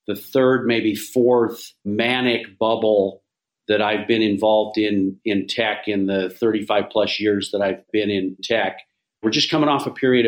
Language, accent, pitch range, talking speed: English, American, 105-125 Hz, 170 wpm